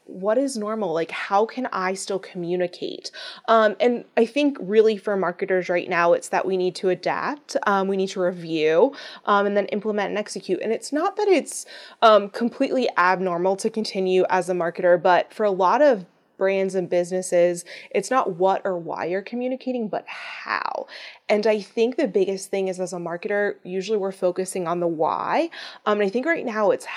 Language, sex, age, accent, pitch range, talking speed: English, female, 20-39, American, 185-235 Hz, 195 wpm